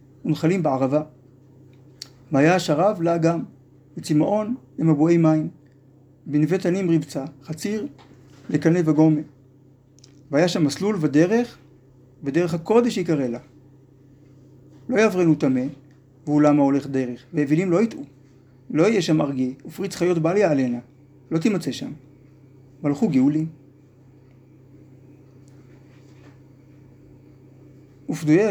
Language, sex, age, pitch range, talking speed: Hebrew, male, 50-69, 135-160 Hz, 95 wpm